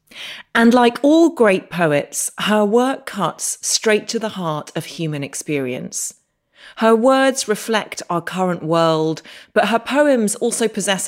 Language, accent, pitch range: English, British, 155-210 Hz